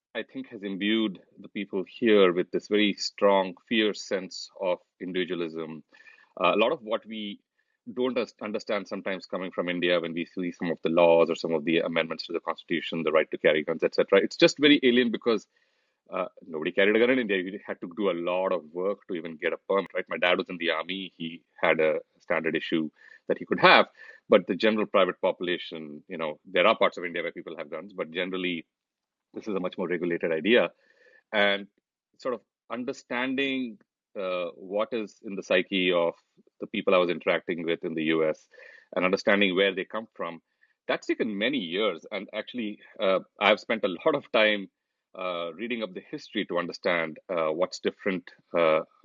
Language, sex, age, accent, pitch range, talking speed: English, male, 30-49, Indian, 90-140 Hz, 200 wpm